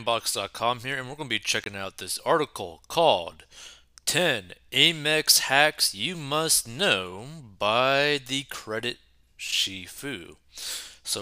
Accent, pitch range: American, 95-145 Hz